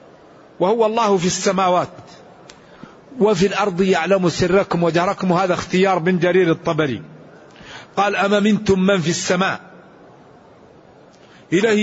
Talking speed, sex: 105 wpm, male